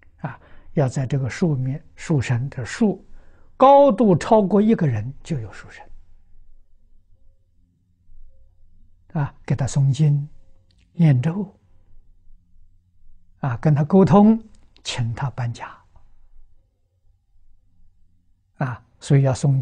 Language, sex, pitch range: Chinese, male, 95-140 Hz